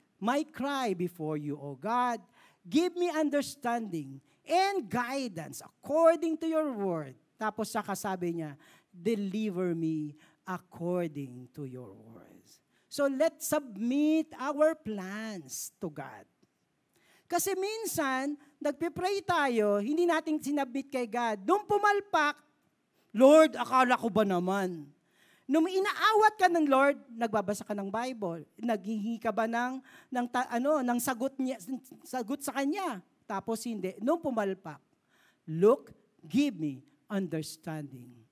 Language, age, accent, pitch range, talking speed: Filipino, 40-59, native, 180-290 Hz, 120 wpm